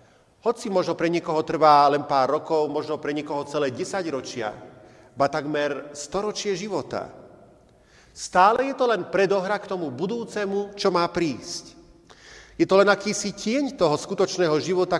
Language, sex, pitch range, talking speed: Slovak, male, 140-190 Hz, 150 wpm